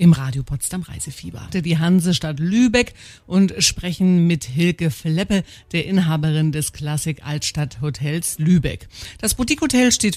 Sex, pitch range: female, 155-210 Hz